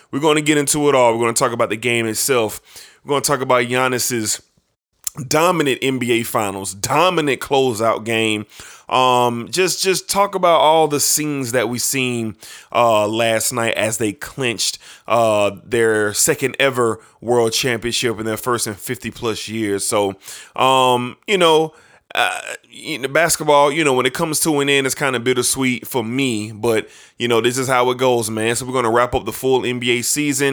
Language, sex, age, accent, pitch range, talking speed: English, male, 20-39, American, 115-145 Hz, 185 wpm